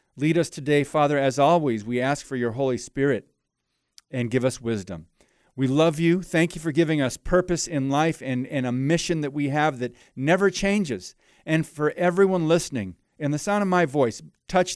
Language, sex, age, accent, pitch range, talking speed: English, male, 40-59, American, 125-165 Hz, 195 wpm